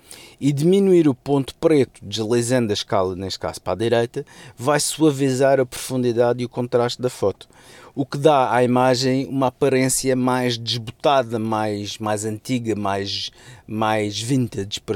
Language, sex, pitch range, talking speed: Portuguese, male, 115-140 Hz, 150 wpm